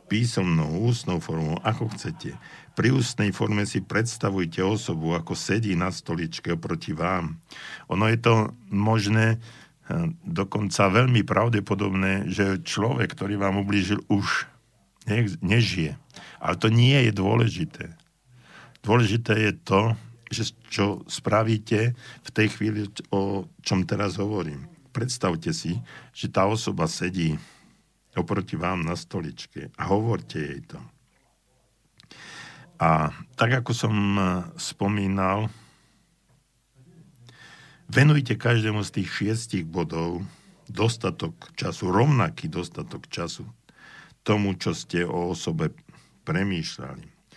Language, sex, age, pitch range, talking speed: Slovak, male, 60-79, 90-115 Hz, 110 wpm